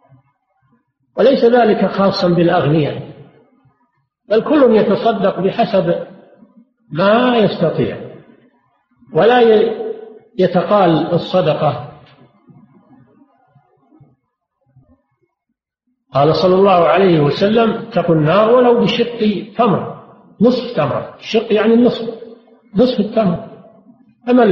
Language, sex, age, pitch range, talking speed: Arabic, male, 50-69, 170-230 Hz, 80 wpm